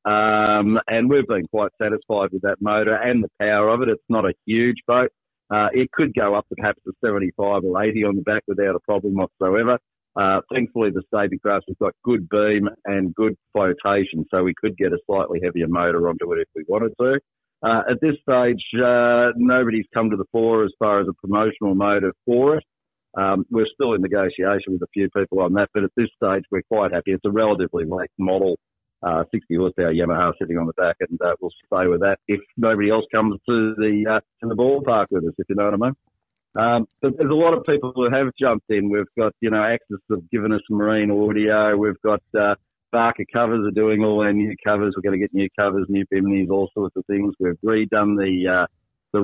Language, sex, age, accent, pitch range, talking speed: English, male, 50-69, Australian, 95-110 Hz, 225 wpm